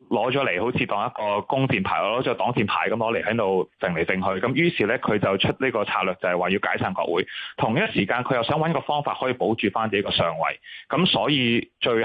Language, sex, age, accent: Chinese, male, 30-49, native